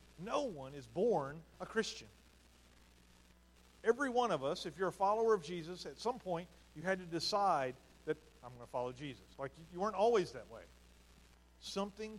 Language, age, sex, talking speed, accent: English, 50-69, male, 175 wpm, American